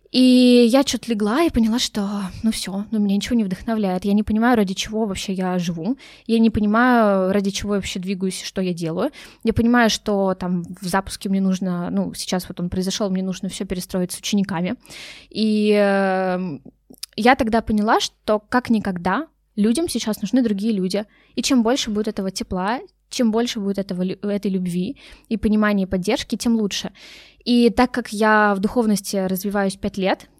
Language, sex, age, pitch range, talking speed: Russian, female, 20-39, 195-235 Hz, 180 wpm